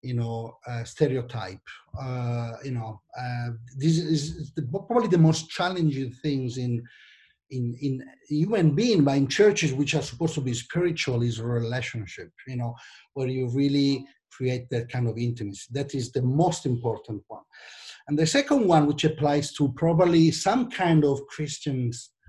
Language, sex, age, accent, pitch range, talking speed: English, male, 50-69, Italian, 120-155 Hz, 160 wpm